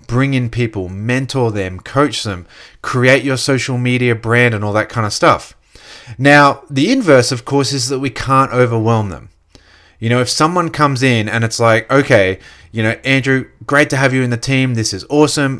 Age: 30-49